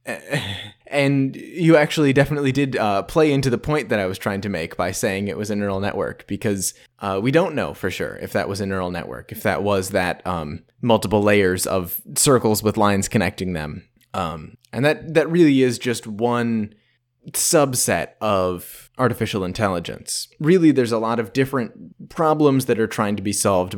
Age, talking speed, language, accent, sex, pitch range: 20-39, 185 wpm, English, American, male, 95-125 Hz